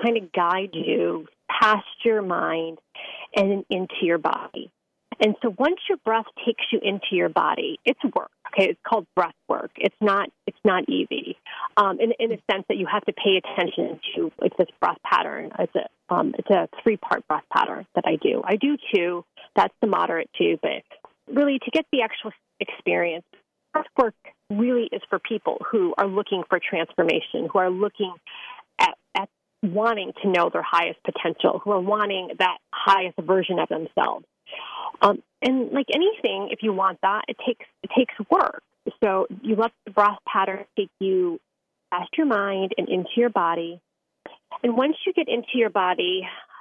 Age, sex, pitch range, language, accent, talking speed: 30-49, female, 195-255 Hz, English, American, 180 wpm